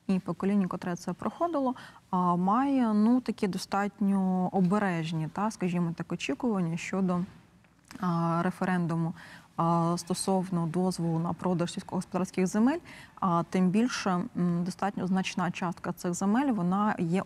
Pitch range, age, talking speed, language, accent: 175-200 Hz, 20-39, 105 wpm, Ukrainian, native